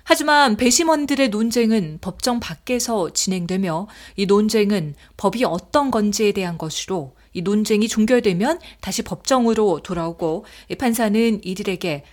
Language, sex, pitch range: Korean, female, 185-250 Hz